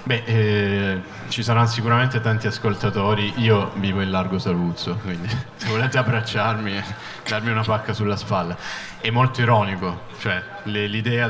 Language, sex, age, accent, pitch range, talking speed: Italian, male, 20-39, native, 95-110 Hz, 145 wpm